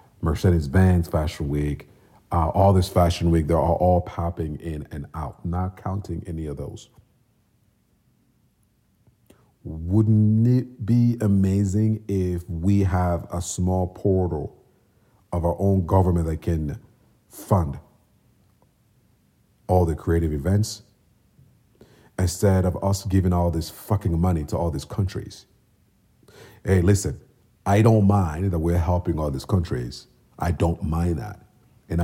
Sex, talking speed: male, 125 wpm